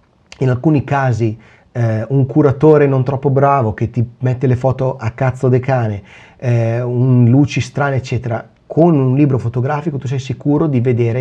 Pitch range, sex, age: 115-135 Hz, male, 30-49